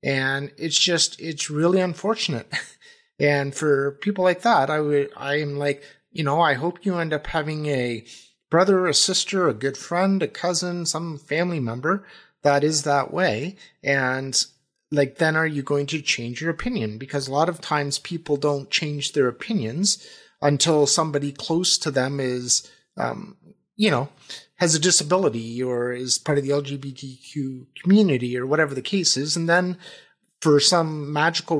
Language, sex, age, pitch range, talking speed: English, male, 30-49, 140-175 Hz, 165 wpm